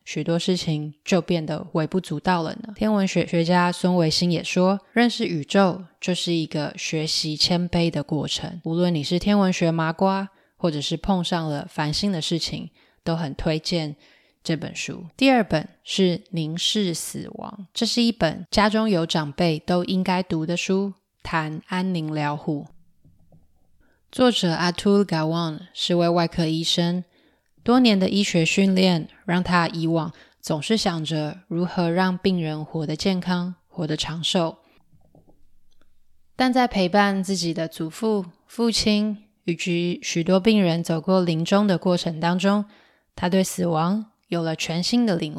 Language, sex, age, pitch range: Chinese, female, 20-39, 165-195 Hz